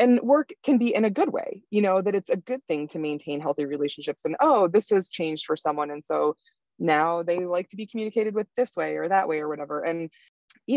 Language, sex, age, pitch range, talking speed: English, female, 20-39, 155-210 Hz, 245 wpm